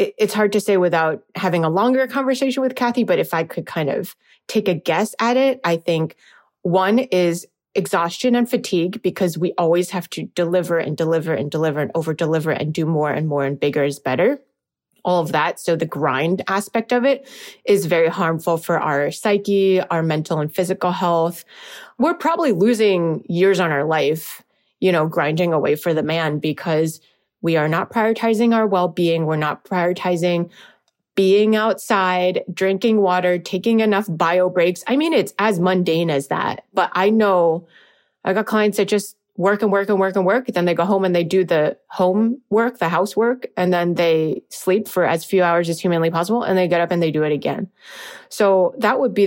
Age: 30-49